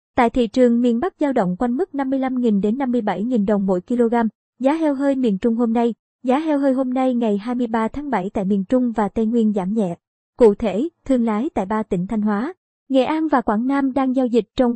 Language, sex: Vietnamese, male